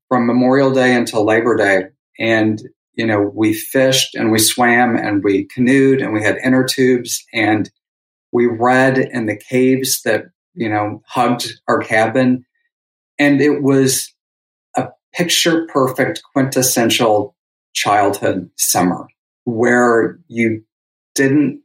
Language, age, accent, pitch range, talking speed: English, 40-59, American, 115-140 Hz, 130 wpm